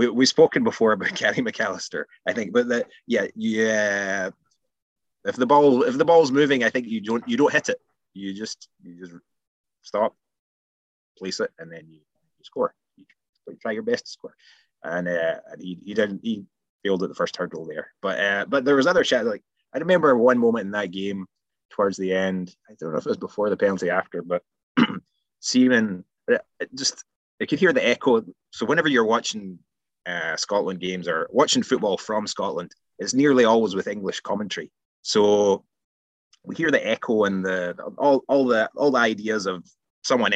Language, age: English, 20-39